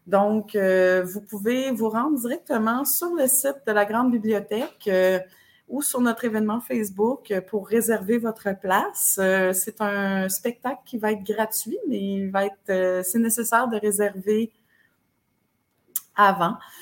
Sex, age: female, 30-49